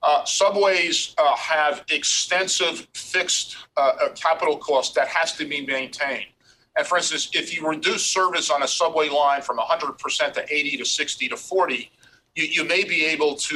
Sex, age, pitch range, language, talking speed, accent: male, 40-59, 140-175 Hz, English, 175 wpm, American